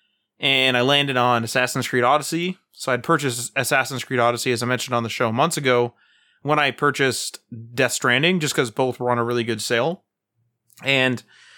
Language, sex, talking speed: English, male, 185 wpm